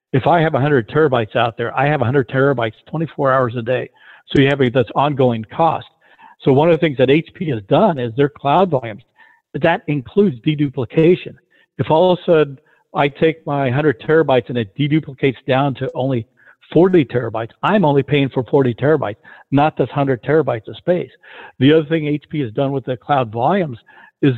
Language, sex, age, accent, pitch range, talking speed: English, male, 60-79, American, 130-160 Hz, 190 wpm